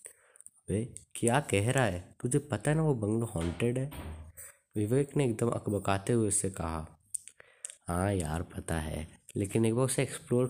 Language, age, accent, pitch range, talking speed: Hindi, 20-39, native, 90-115 Hz, 165 wpm